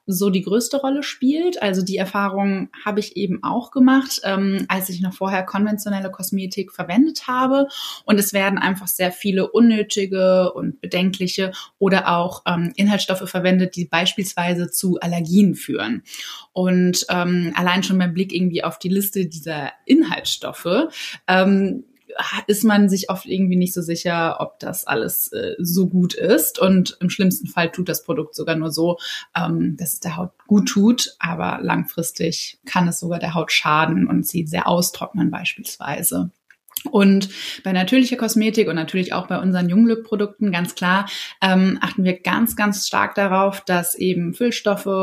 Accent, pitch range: German, 175-205 Hz